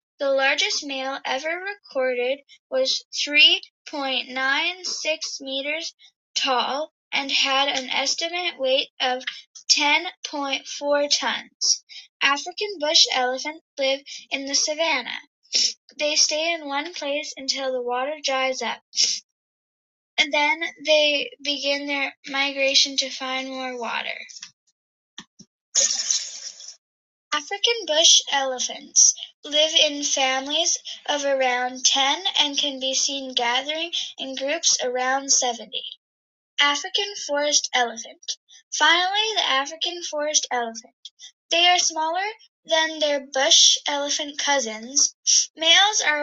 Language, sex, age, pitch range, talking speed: English, female, 10-29, 270-325 Hz, 105 wpm